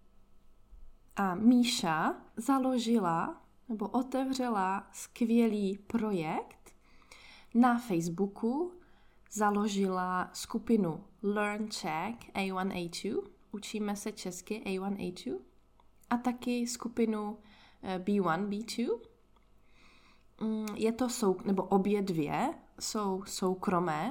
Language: Czech